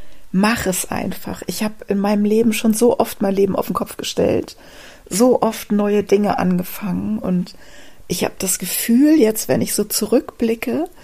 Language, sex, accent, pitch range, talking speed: German, female, German, 190-235 Hz, 175 wpm